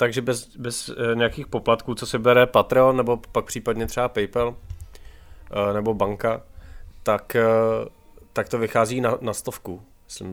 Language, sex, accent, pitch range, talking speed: Czech, male, native, 105-125 Hz, 140 wpm